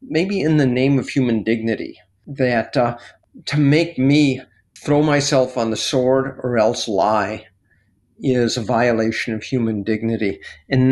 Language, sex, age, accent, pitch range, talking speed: English, male, 50-69, American, 115-145 Hz, 150 wpm